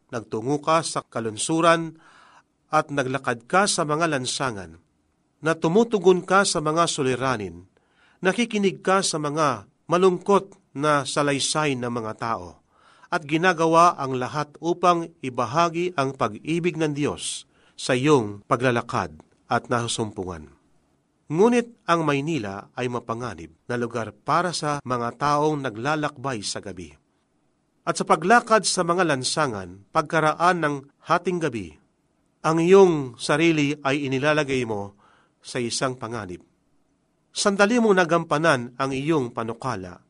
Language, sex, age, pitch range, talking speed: Filipino, male, 40-59, 125-170 Hz, 120 wpm